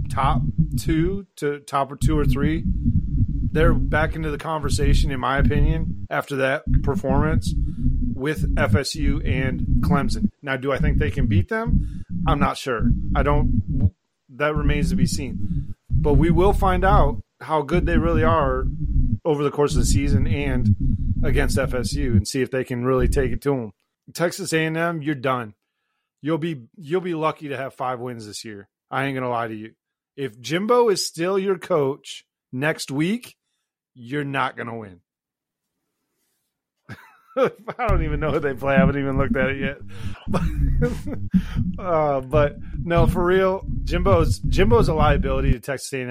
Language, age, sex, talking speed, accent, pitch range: English, 30-49, male, 165 wpm, American, 125-160 Hz